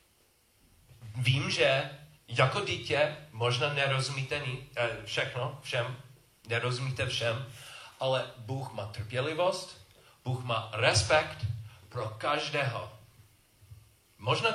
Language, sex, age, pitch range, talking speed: Czech, male, 40-59, 110-140 Hz, 85 wpm